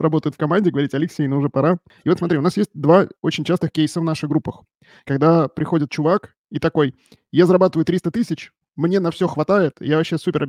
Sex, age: male, 20-39